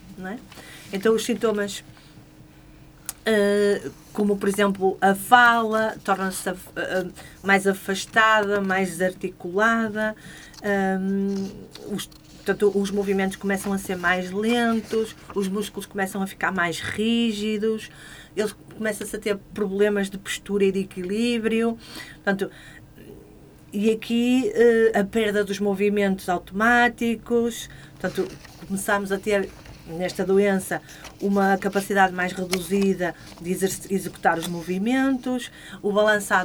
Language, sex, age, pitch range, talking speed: Portuguese, female, 40-59, 185-215 Hz, 115 wpm